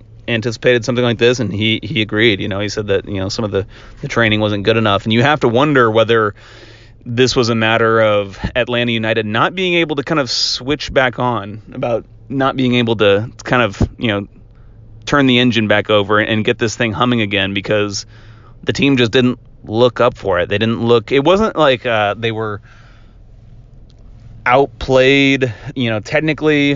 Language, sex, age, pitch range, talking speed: English, male, 30-49, 105-120 Hz, 195 wpm